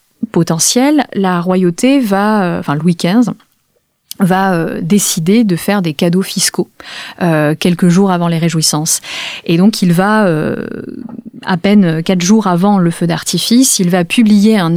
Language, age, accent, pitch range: French, 30-49, French, 175-220 Hz